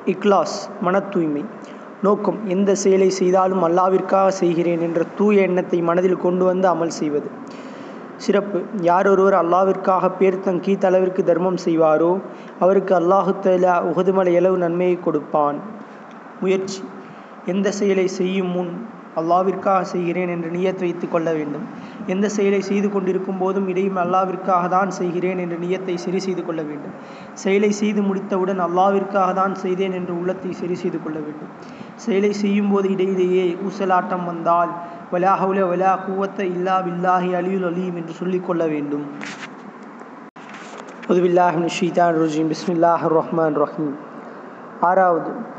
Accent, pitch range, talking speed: native, 175-195 Hz, 105 wpm